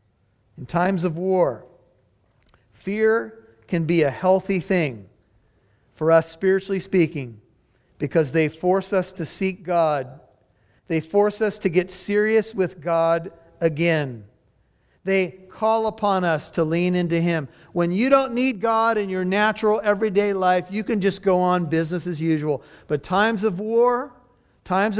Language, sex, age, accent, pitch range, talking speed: English, male, 50-69, American, 145-190 Hz, 145 wpm